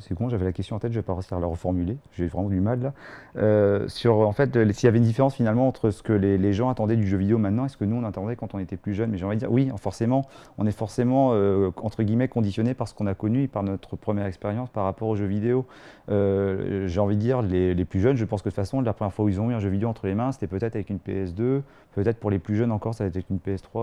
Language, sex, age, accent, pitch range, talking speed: French, male, 30-49, French, 100-120 Hz, 310 wpm